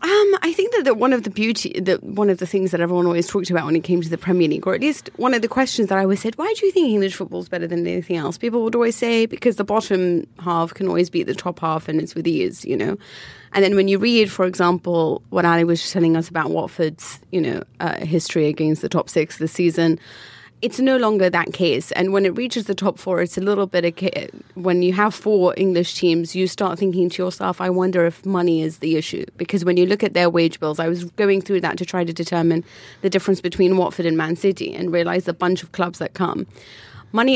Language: English